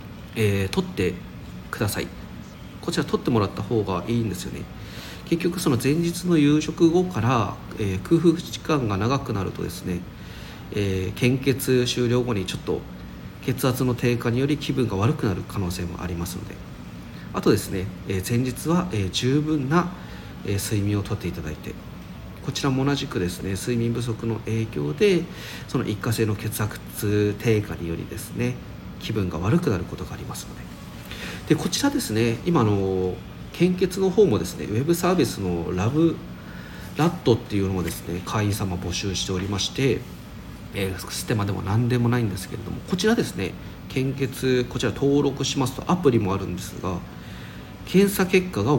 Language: Japanese